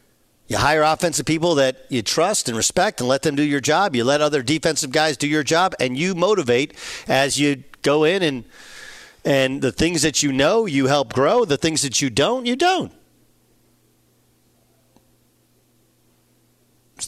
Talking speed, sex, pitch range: 170 wpm, male, 130-155 Hz